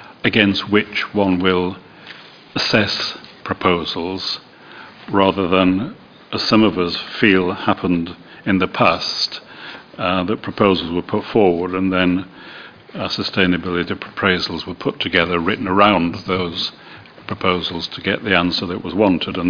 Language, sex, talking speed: English, male, 130 wpm